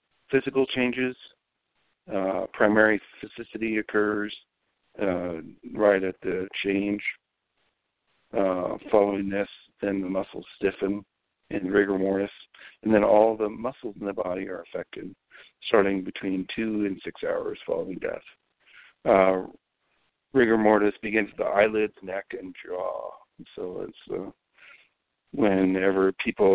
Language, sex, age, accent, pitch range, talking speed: English, male, 60-79, American, 95-110 Hz, 120 wpm